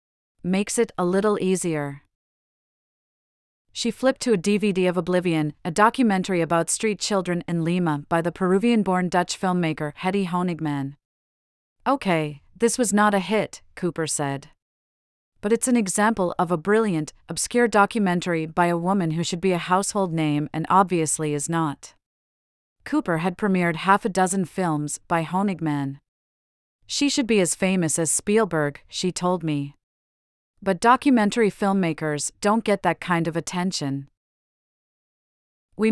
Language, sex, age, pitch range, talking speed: English, female, 30-49, 160-205 Hz, 140 wpm